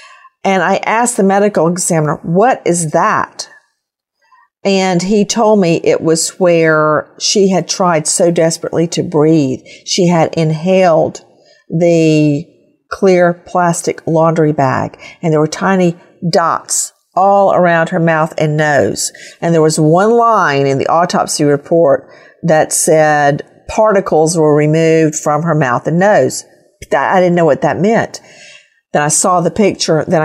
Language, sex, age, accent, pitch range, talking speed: English, female, 50-69, American, 150-185 Hz, 145 wpm